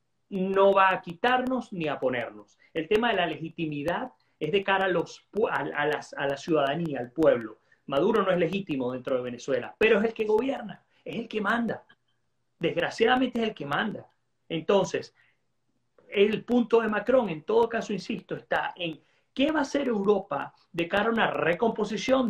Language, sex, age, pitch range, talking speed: Spanish, male, 40-59, 145-220 Hz, 180 wpm